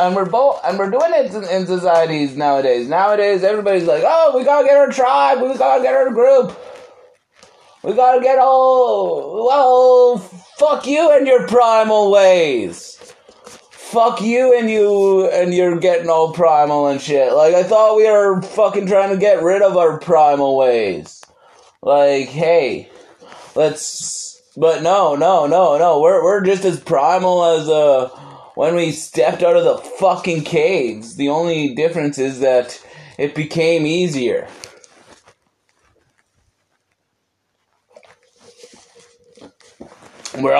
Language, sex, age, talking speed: English, male, 30-49, 135 wpm